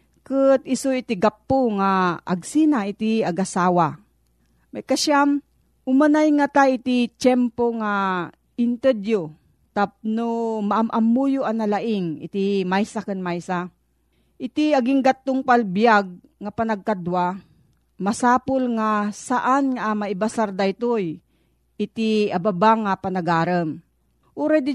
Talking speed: 100 wpm